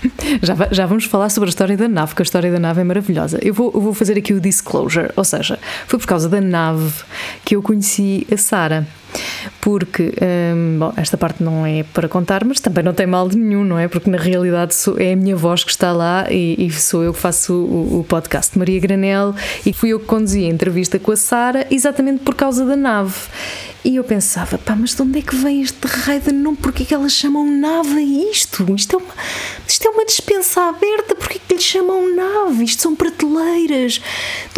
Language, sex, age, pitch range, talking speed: Portuguese, female, 20-39, 185-270 Hz, 225 wpm